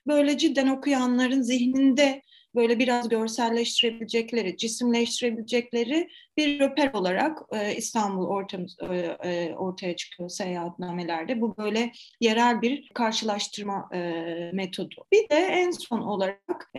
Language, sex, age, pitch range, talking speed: Turkish, female, 30-49, 200-260 Hz, 95 wpm